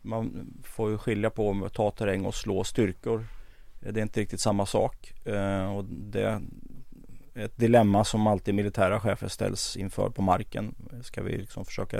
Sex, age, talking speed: male, 30-49, 175 wpm